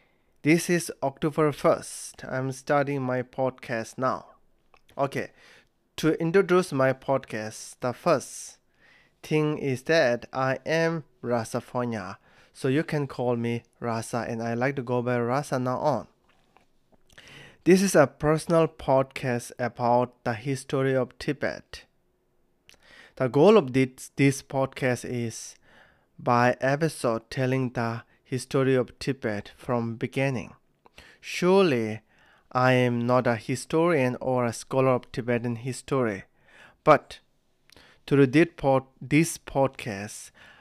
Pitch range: 120-140 Hz